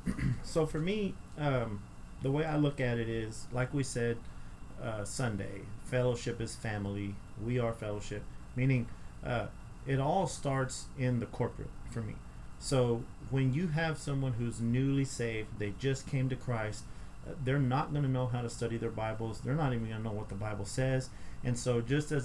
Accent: American